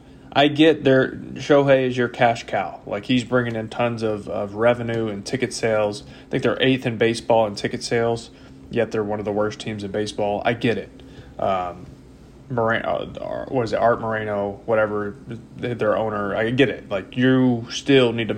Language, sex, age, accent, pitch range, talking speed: English, male, 20-39, American, 115-155 Hz, 195 wpm